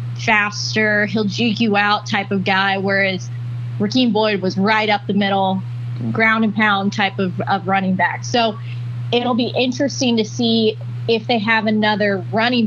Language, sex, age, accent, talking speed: English, female, 20-39, American, 165 wpm